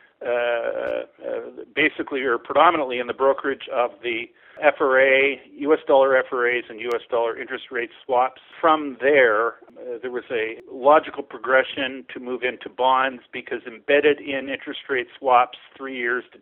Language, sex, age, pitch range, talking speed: English, male, 50-69, 125-155 Hz, 150 wpm